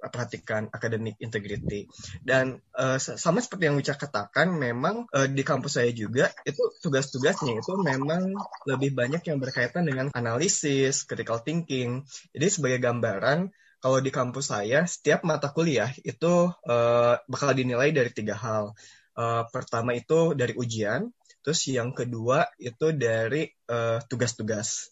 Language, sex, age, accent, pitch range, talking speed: Indonesian, male, 20-39, native, 120-155 Hz, 135 wpm